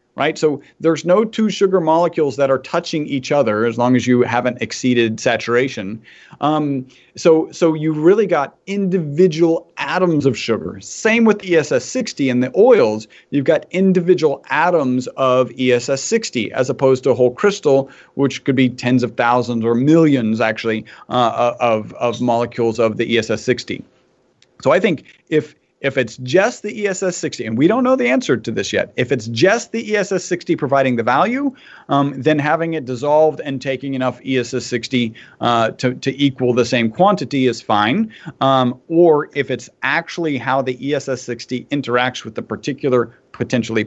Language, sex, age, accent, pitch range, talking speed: English, male, 40-59, American, 125-165 Hz, 165 wpm